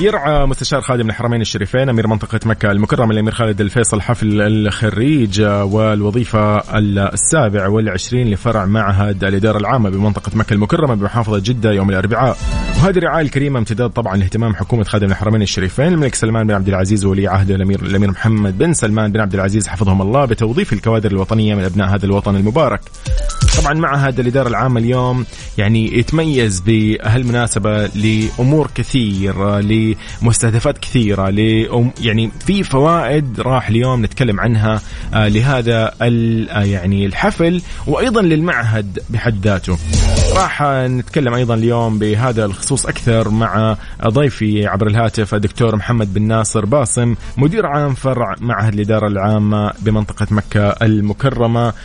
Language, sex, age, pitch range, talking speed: Arabic, male, 30-49, 105-125 Hz, 135 wpm